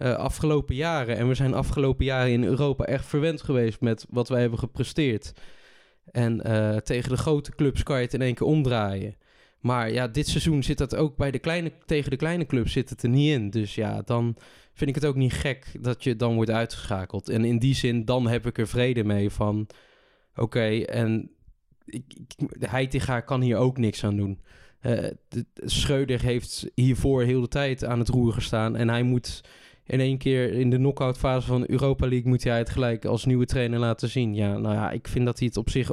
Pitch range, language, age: 110-130 Hz, Dutch, 20-39